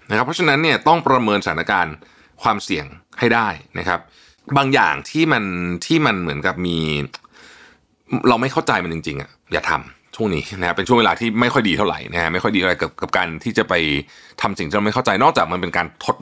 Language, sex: Thai, male